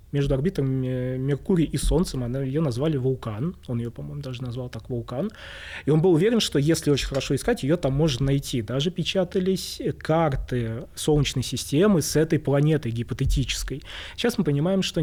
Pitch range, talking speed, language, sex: 130-155 Hz, 170 wpm, Russian, male